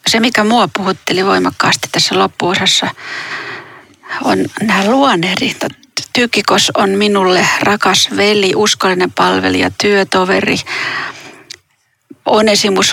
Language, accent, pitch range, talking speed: Finnish, native, 190-235 Hz, 90 wpm